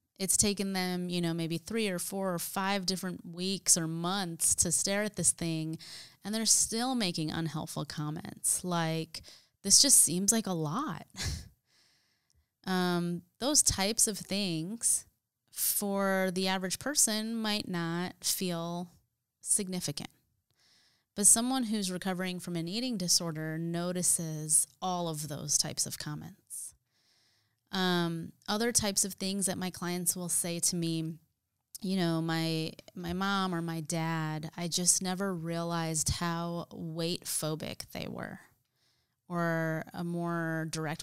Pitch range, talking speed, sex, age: 160-190 Hz, 135 wpm, female, 20-39